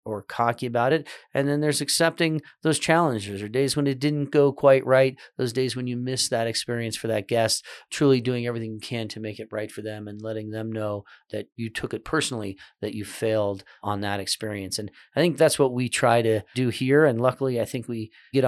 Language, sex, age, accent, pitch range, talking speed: English, male, 40-59, American, 110-130 Hz, 225 wpm